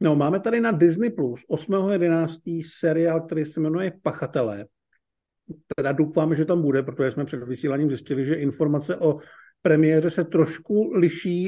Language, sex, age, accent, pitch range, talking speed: Czech, male, 50-69, native, 145-170 Hz, 150 wpm